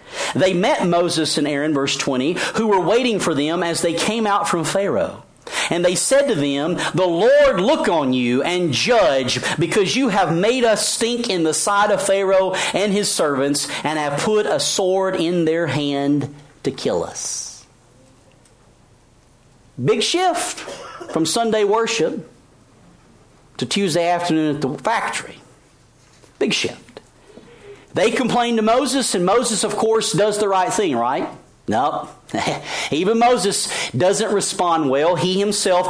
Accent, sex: American, male